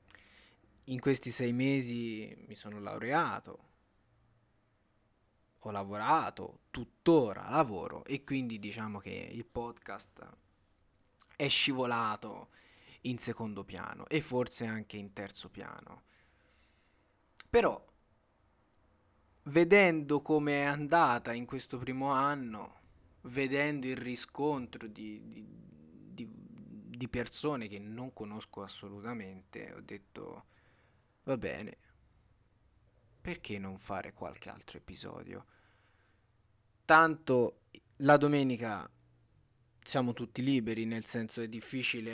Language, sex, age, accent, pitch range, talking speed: Italian, male, 20-39, native, 105-125 Hz, 100 wpm